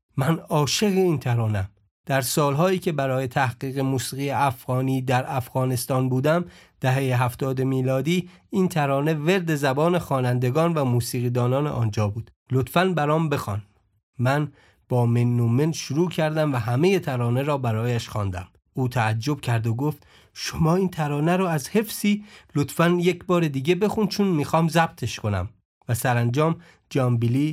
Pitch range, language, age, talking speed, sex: 115-150 Hz, Persian, 40-59, 145 wpm, male